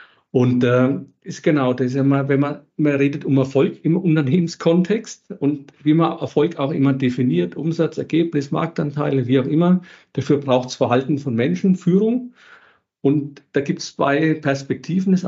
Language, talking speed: English, 160 wpm